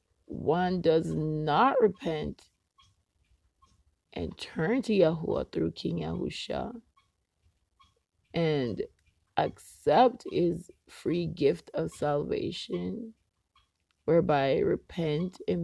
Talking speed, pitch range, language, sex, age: 80 wpm, 145-205 Hz, English, female, 20-39